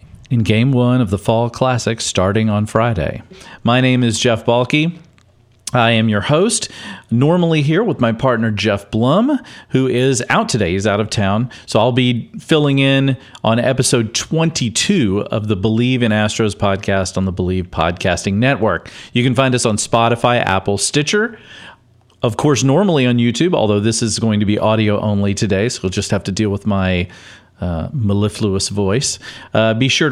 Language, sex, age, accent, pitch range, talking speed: English, male, 40-59, American, 105-130 Hz, 175 wpm